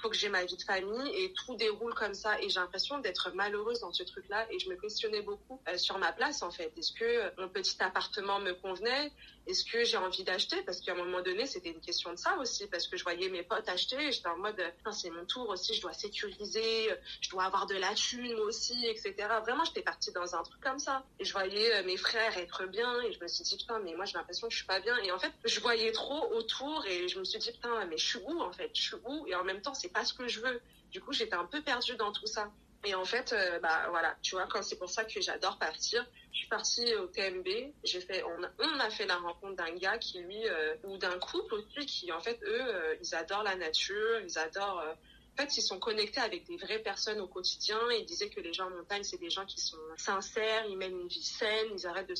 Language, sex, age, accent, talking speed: French, female, 30-49, French, 265 wpm